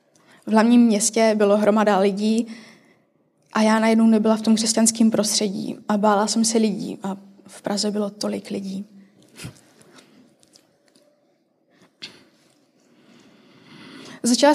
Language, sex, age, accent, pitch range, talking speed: Czech, female, 20-39, native, 210-240 Hz, 105 wpm